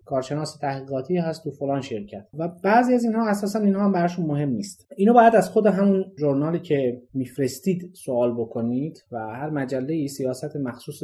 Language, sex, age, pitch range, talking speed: Persian, male, 30-49, 135-195 Hz, 165 wpm